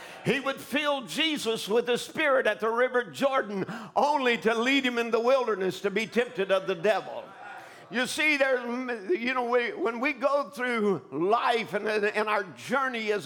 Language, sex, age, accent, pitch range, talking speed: English, male, 50-69, American, 220-280 Hz, 180 wpm